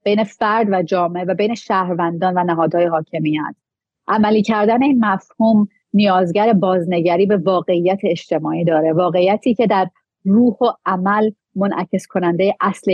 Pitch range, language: 170-210 Hz, Persian